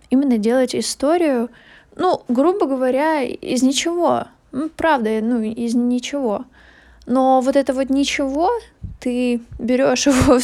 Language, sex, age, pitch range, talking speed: Russian, female, 20-39, 225-265 Hz, 125 wpm